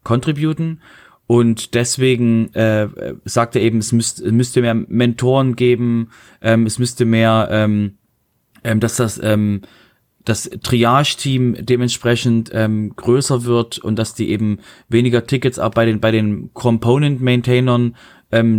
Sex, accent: male, German